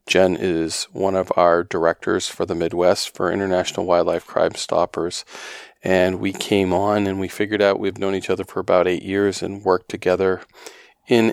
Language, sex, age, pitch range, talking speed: English, male, 40-59, 90-100 Hz, 180 wpm